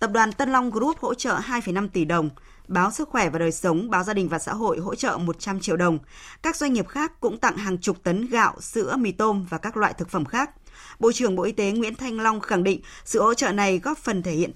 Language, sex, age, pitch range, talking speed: Vietnamese, female, 20-39, 175-235 Hz, 265 wpm